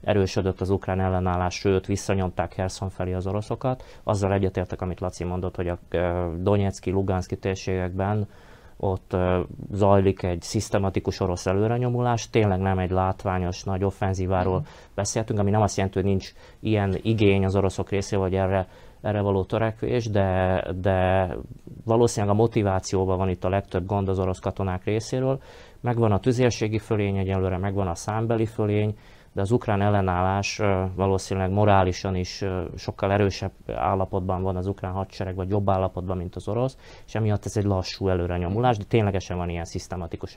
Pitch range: 95-105 Hz